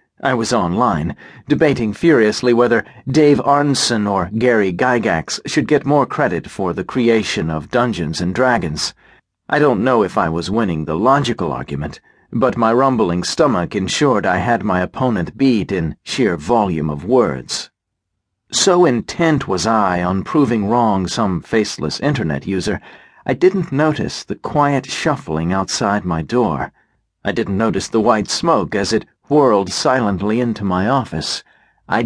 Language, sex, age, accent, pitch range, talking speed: English, male, 50-69, American, 90-130 Hz, 150 wpm